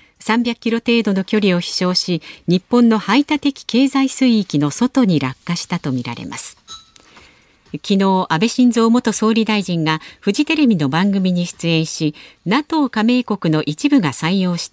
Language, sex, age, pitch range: Japanese, female, 50-69, 155-245 Hz